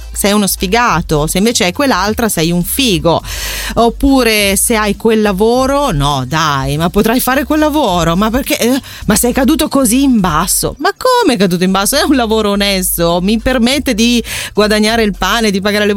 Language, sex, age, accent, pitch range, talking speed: Italian, female, 30-49, native, 185-250 Hz, 190 wpm